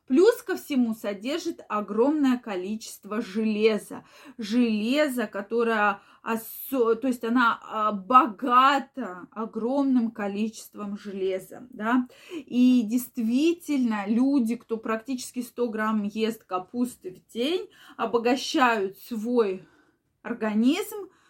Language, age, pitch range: Russian, 20-39, 220-285 Hz